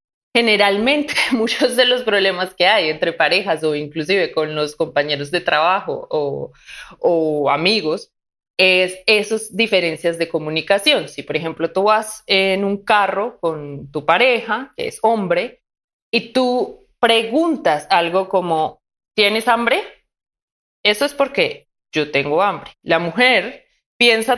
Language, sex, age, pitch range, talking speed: Spanish, female, 20-39, 170-245 Hz, 135 wpm